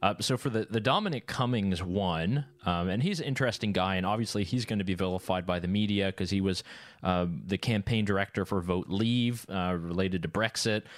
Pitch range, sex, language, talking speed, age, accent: 95-115 Hz, male, English, 210 wpm, 30-49, American